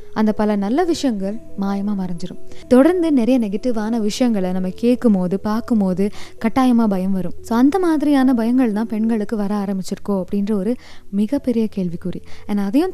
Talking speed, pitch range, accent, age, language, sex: 135 wpm, 195-245 Hz, native, 20-39, Tamil, female